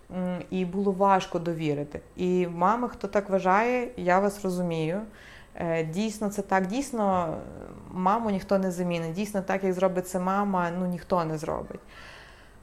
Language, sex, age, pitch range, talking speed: Ukrainian, female, 20-39, 165-195 Hz, 145 wpm